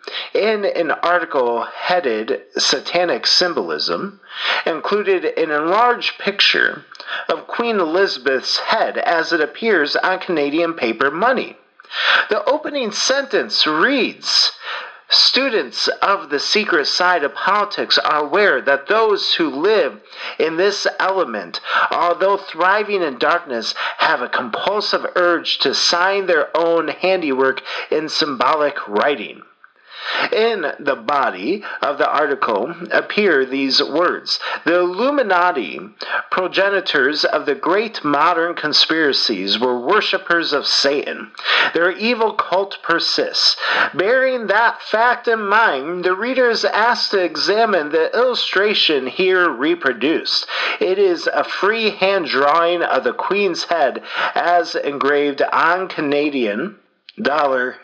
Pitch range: 175-265 Hz